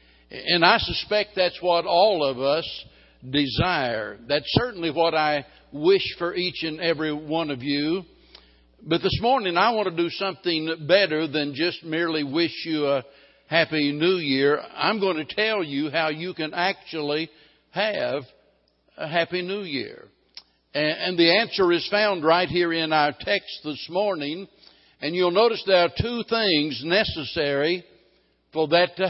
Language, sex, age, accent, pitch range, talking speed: English, male, 60-79, American, 155-195 Hz, 155 wpm